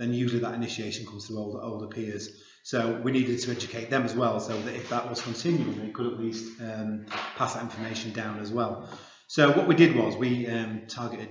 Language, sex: English, male